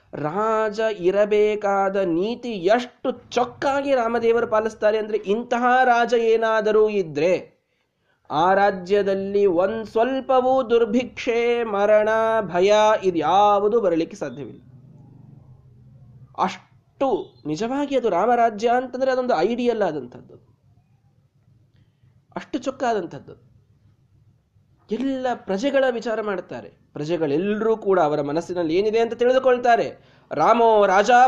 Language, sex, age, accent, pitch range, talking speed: Kannada, male, 20-39, native, 160-240 Hz, 90 wpm